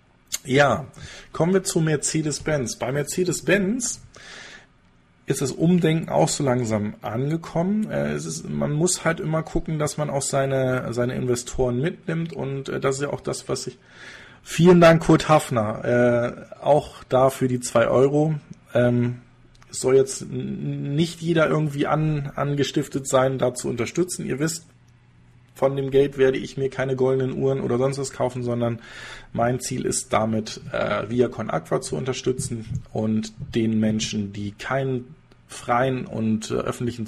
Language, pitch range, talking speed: German, 120-150 Hz, 145 wpm